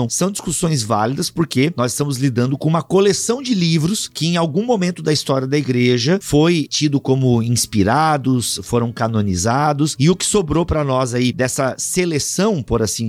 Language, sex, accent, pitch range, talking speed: Portuguese, male, Brazilian, 115-160 Hz, 170 wpm